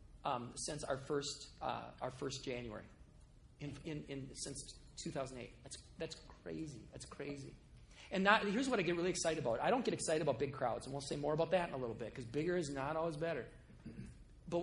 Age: 40-59